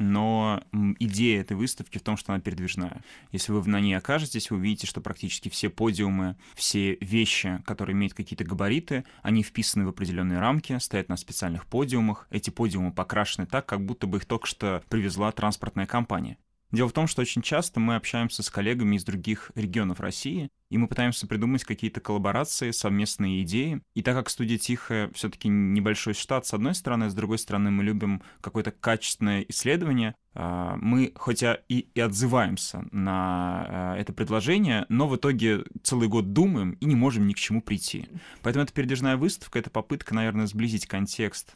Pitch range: 100-120 Hz